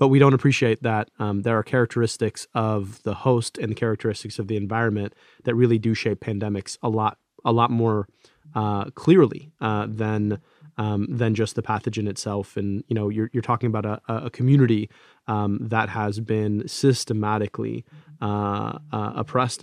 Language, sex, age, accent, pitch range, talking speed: English, male, 30-49, American, 105-115 Hz, 170 wpm